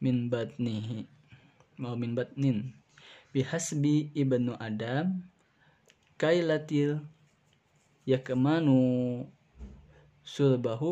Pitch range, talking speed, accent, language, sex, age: 125-150 Hz, 60 wpm, native, Indonesian, male, 20-39